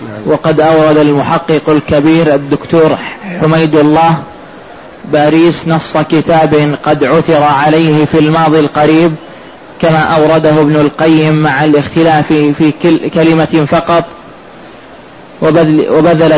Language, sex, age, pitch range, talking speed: Arabic, male, 20-39, 155-165 Hz, 95 wpm